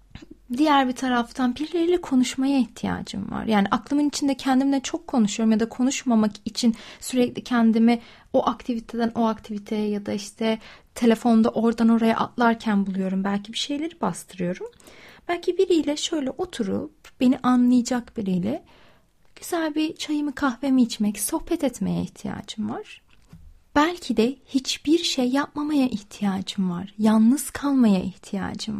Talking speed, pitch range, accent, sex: 125 wpm, 225-290 Hz, native, female